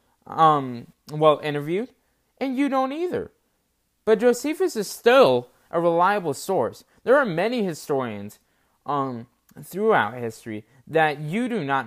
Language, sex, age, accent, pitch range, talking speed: English, male, 20-39, American, 130-205 Hz, 125 wpm